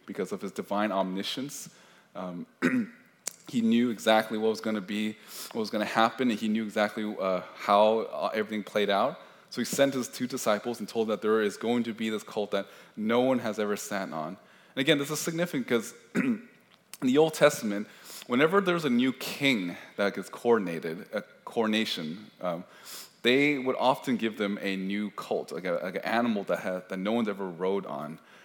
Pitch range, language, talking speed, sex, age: 100-125 Hz, English, 200 wpm, male, 20-39